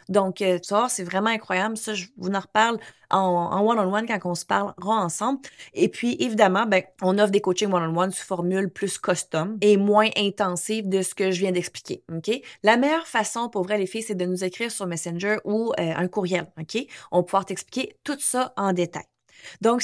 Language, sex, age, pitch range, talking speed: French, female, 20-39, 190-245 Hz, 210 wpm